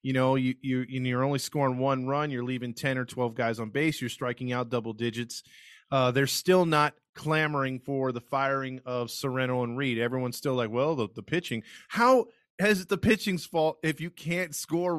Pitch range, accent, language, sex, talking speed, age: 130-165 Hz, American, English, male, 210 wpm, 20-39